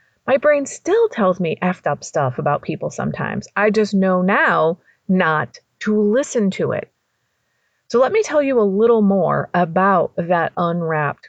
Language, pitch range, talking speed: English, 185-230 Hz, 165 wpm